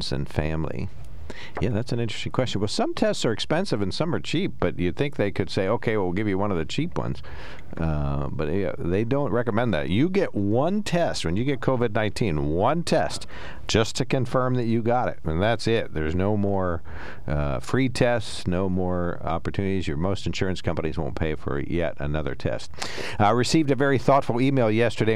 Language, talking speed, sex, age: English, 200 wpm, male, 50-69